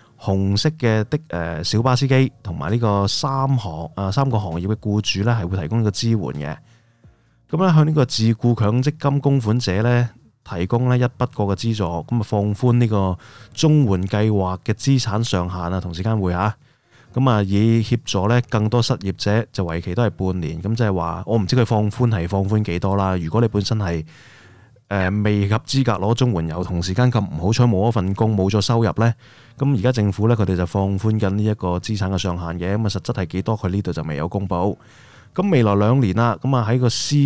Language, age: Chinese, 20-39